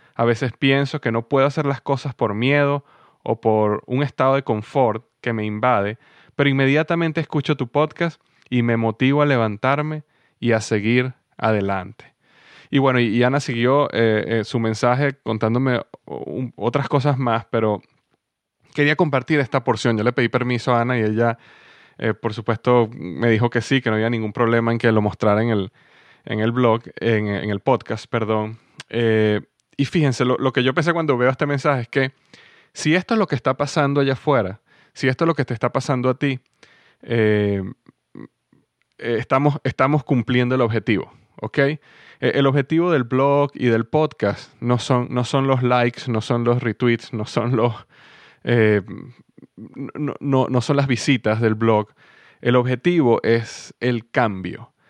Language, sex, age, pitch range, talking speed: Spanish, male, 20-39, 115-140 Hz, 170 wpm